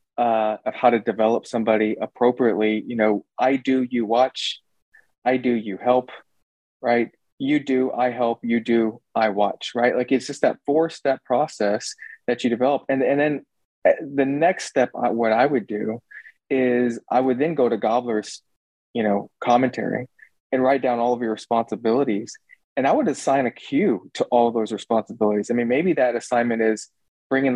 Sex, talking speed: male, 175 wpm